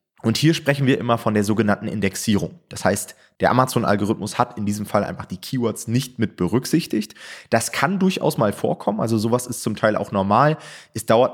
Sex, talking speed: male, 195 wpm